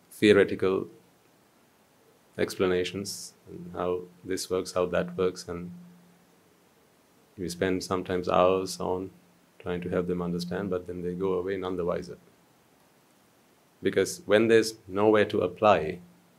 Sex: male